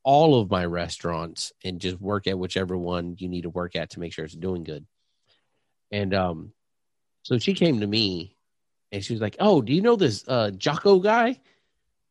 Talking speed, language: 200 wpm, English